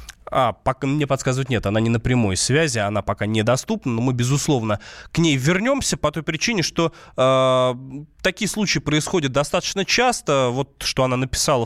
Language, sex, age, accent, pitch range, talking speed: Russian, male, 20-39, native, 120-170 Hz, 170 wpm